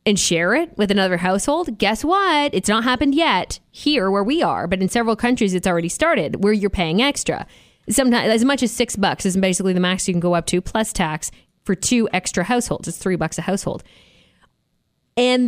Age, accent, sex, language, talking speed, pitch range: 20-39, American, female, English, 210 wpm, 185-245 Hz